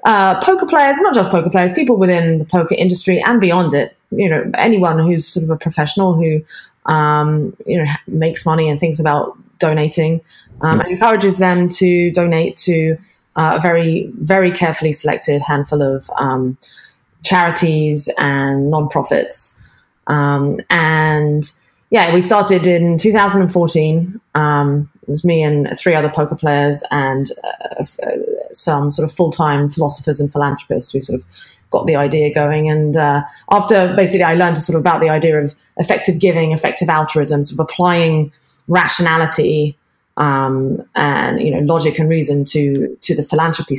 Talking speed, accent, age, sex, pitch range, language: 160 wpm, British, 20-39, female, 150-175 Hz, English